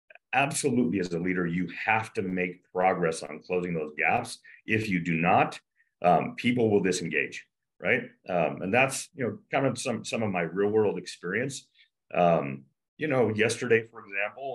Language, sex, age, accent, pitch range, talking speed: English, male, 40-59, American, 85-125 Hz, 175 wpm